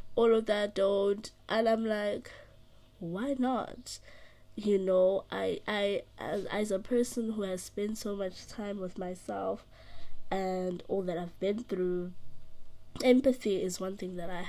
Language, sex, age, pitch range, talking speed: English, female, 20-39, 130-195 Hz, 155 wpm